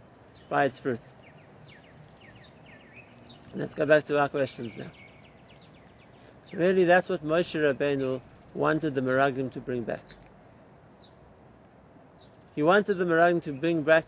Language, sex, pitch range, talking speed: English, male, 145-180 Hz, 120 wpm